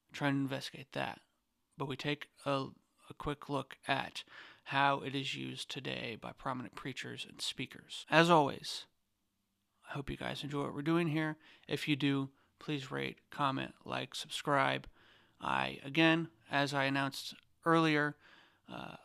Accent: American